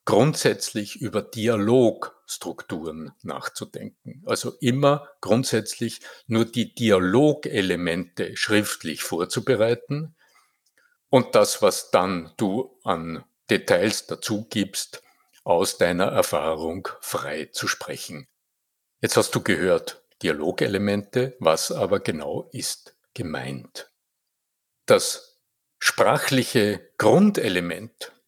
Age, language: 60-79, German